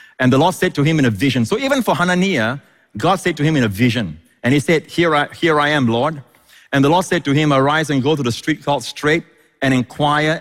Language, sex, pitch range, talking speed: English, male, 120-155 Hz, 255 wpm